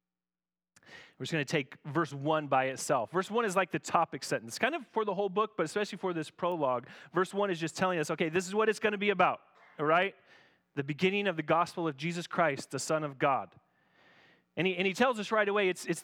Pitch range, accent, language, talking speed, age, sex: 125-185 Hz, American, English, 250 wpm, 30-49, male